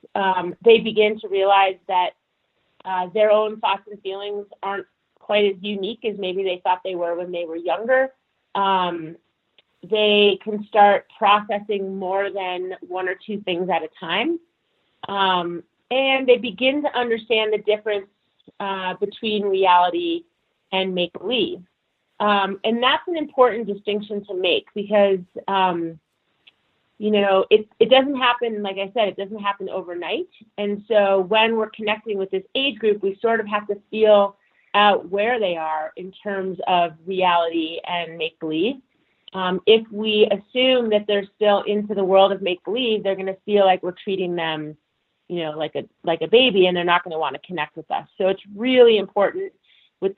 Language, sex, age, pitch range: English, female, 30-49, 185-215 Hz